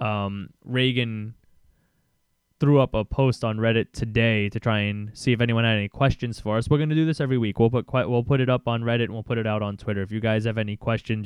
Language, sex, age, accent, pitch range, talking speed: English, male, 20-39, American, 105-125 Hz, 260 wpm